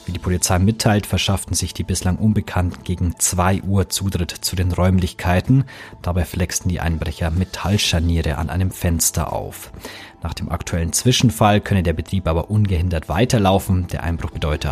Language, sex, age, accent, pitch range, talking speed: German, male, 40-59, German, 85-110 Hz, 155 wpm